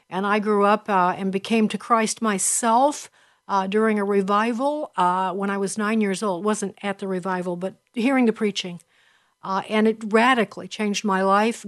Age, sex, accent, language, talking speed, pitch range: 60-79, female, American, English, 185 wpm, 200-245 Hz